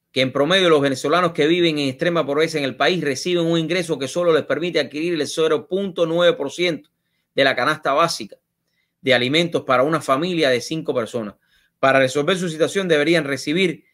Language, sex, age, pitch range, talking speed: English, male, 30-49, 125-170 Hz, 185 wpm